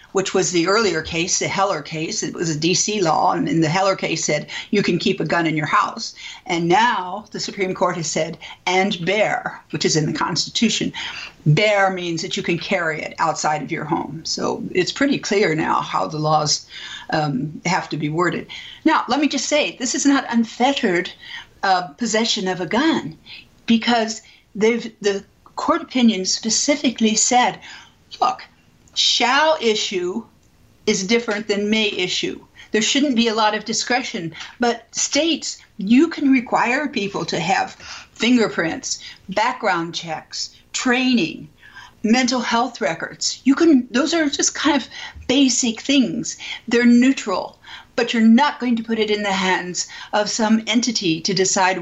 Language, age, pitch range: English, 50-69, 180-245 Hz